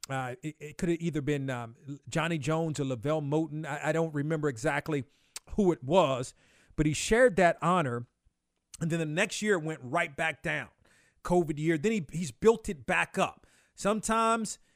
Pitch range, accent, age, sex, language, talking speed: 155-195 Hz, American, 40-59, male, English, 185 wpm